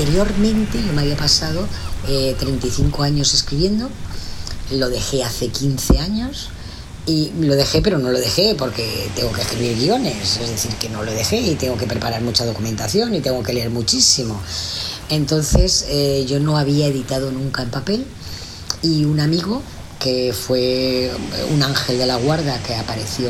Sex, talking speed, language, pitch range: female, 165 wpm, Spanish, 120-145 Hz